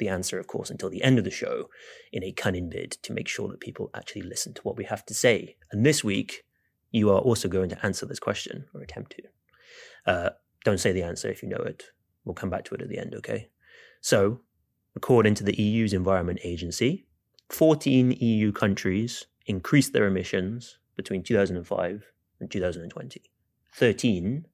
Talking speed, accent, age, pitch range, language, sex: 190 wpm, British, 30-49, 95-125 Hz, English, male